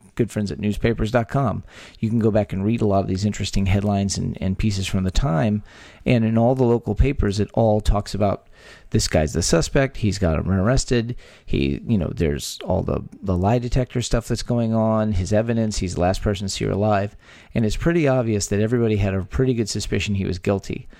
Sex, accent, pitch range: male, American, 100-115 Hz